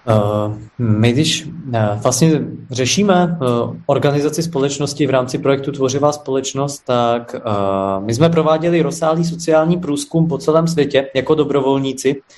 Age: 20-39